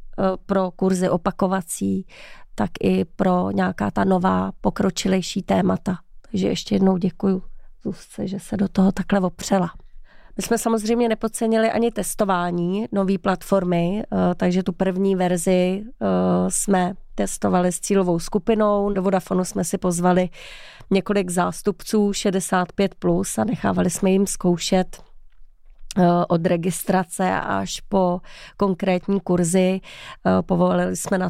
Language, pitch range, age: Czech, 180-195 Hz, 30-49